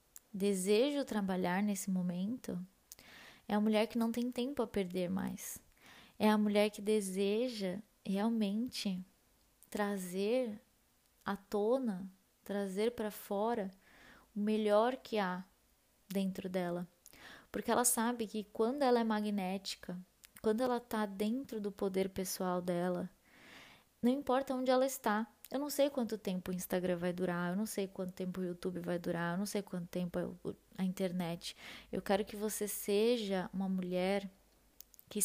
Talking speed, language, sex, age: 145 wpm, Portuguese, female, 20-39